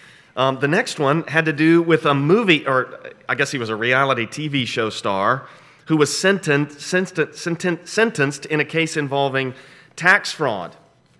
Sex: male